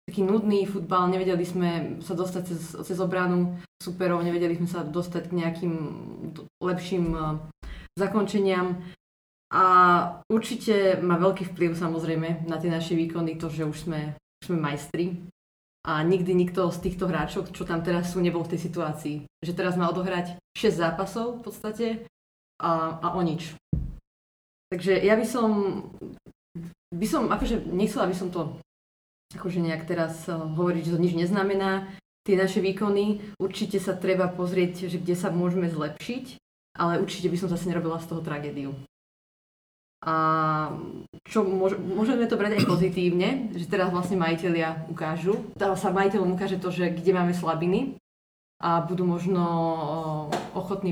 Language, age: Slovak, 20-39